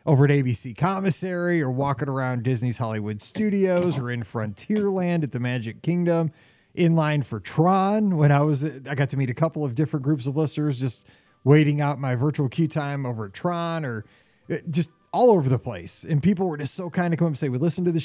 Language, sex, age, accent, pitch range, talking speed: English, male, 30-49, American, 130-170 Hz, 220 wpm